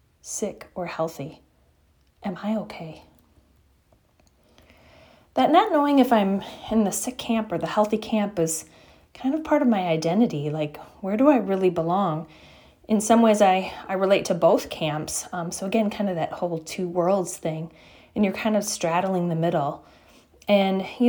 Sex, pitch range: female, 175-220 Hz